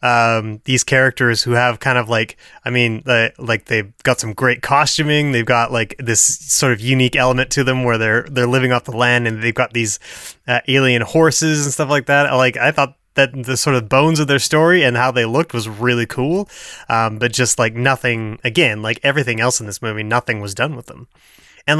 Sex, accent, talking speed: male, American, 225 wpm